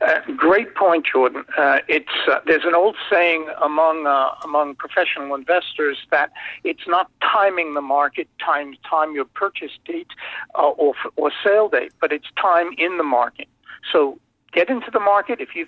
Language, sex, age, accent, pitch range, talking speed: English, male, 60-79, American, 150-230 Hz, 175 wpm